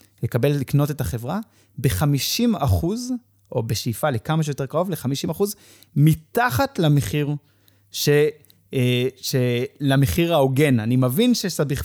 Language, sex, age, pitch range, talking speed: Hebrew, male, 20-39, 120-150 Hz, 100 wpm